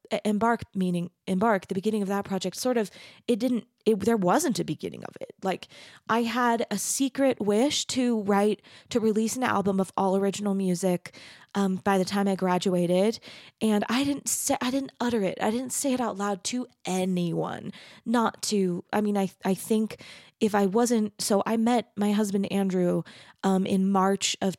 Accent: American